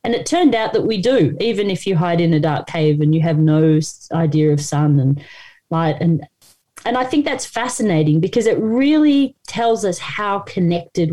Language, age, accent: English, 30-49, Australian